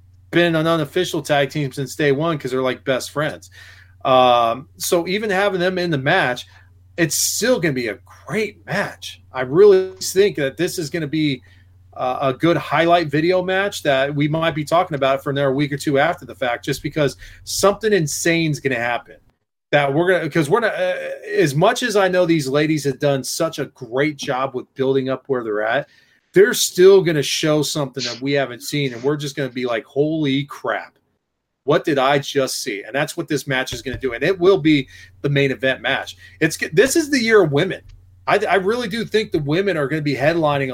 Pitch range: 135-185 Hz